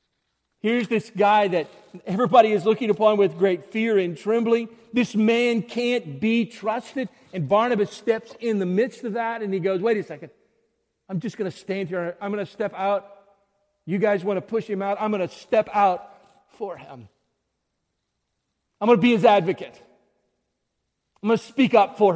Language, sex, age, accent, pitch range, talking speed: English, male, 50-69, American, 185-215 Hz, 185 wpm